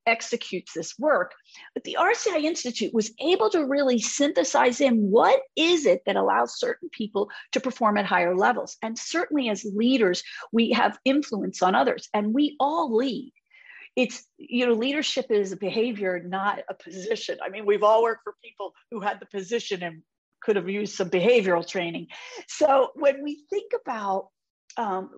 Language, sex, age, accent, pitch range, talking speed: English, female, 50-69, American, 215-285 Hz, 170 wpm